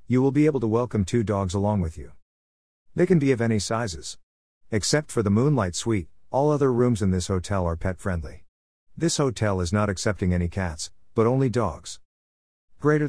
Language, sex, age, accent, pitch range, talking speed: English, male, 50-69, American, 85-115 Hz, 190 wpm